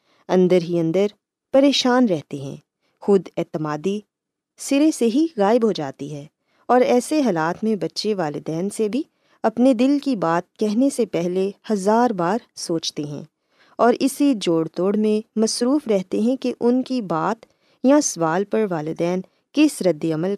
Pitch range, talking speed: 170-245 Hz, 155 wpm